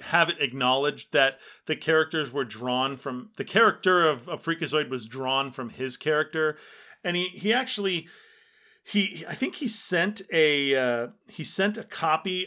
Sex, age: male, 40-59